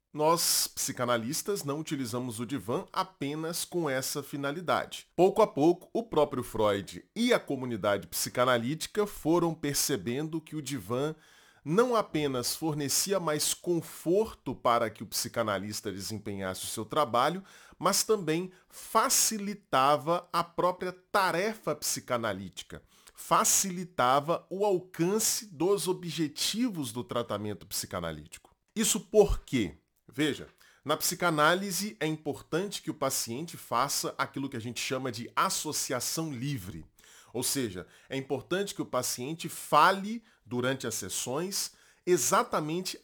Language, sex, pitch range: Portuguese, male, 125-185 Hz